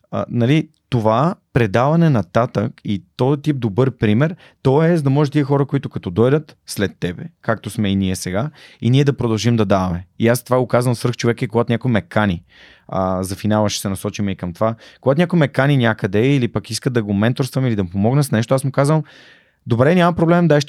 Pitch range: 110-140 Hz